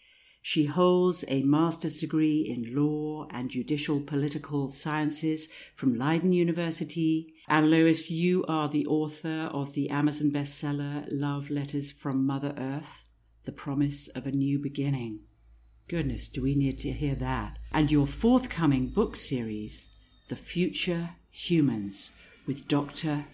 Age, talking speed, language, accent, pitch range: 50-69, 135 wpm, English, British, 135-165 Hz